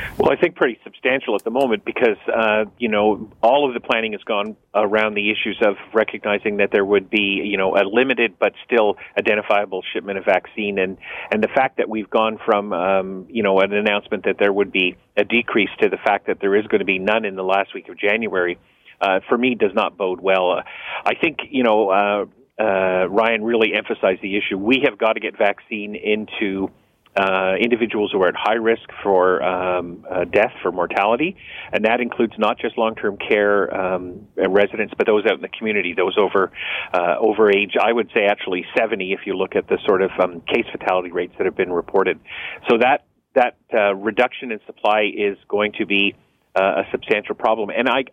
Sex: male